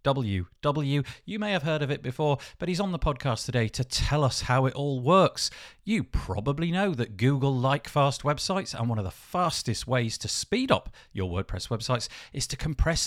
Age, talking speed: 40-59, 195 wpm